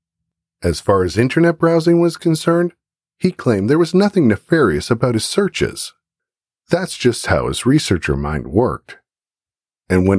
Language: English